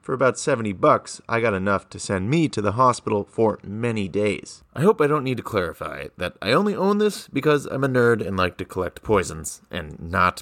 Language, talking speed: English, 225 wpm